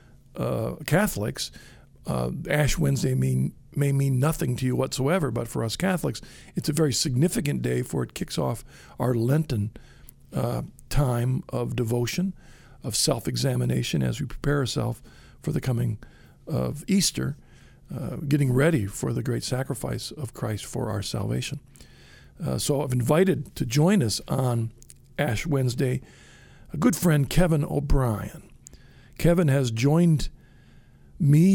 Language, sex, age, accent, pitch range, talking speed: English, male, 50-69, American, 125-160 Hz, 140 wpm